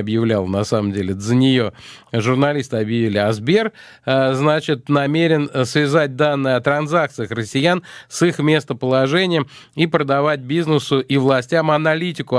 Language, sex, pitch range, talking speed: Russian, male, 125-155 Hz, 125 wpm